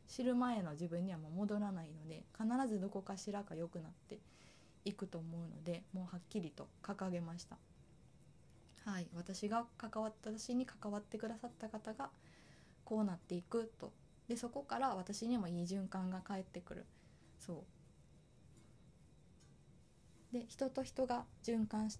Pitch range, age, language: 175-230 Hz, 20-39, Japanese